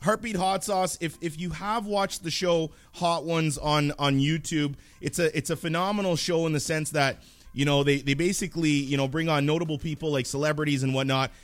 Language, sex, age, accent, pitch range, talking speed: English, male, 30-49, American, 145-195 Hz, 210 wpm